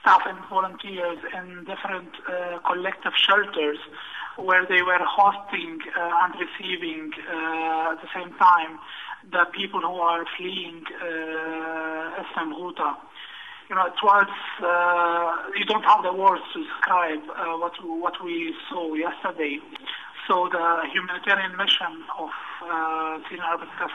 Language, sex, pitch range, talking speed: English, male, 165-185 Hz, 135 wpm